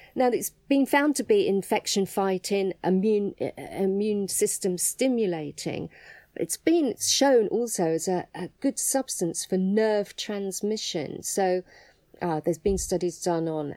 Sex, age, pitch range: female, 40-59, 175-230 Hz